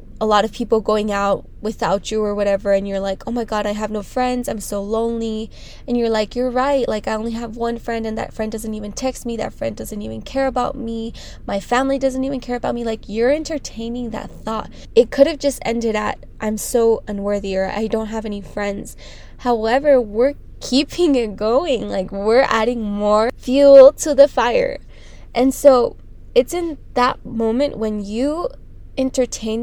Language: English